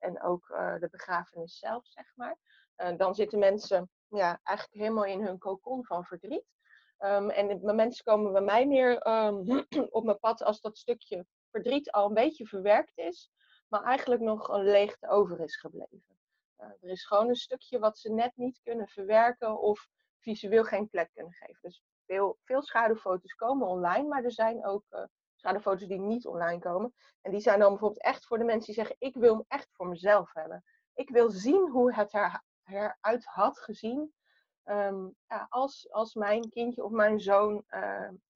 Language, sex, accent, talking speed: Dutch, female, Dutch, 180 wpm